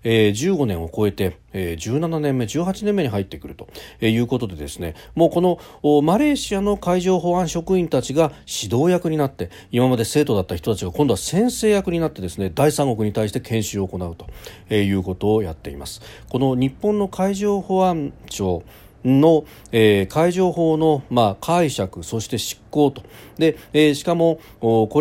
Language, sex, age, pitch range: Japanese, male, 40-59, 105-155 Hz